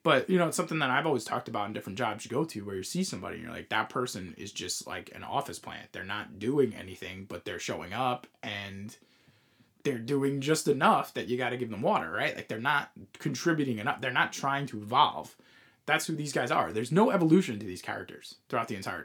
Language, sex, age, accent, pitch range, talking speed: English, male, 20-39, American, 110-150 Hz, 240 wpm